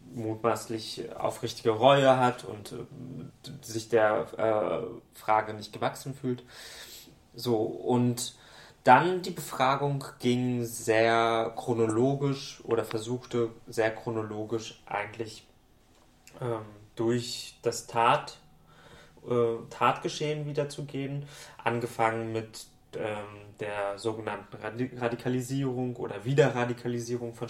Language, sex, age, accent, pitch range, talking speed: German, male, 20-39, German, 115-125 Hz, 90 wpm